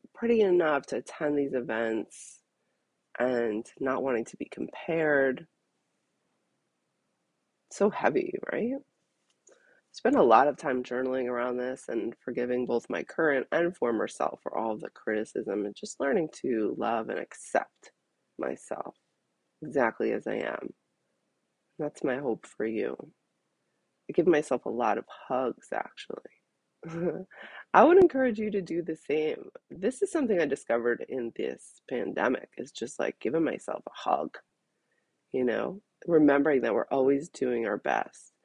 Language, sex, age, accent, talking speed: English, female, 20-39, American, 145 wpm